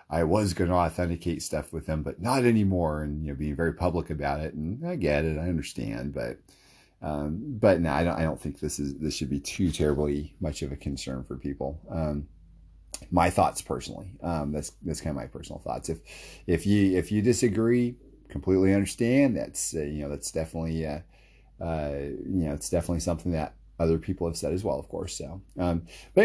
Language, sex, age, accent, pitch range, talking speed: English, male, 30-49, American, 75-95 Hz, 210 wpm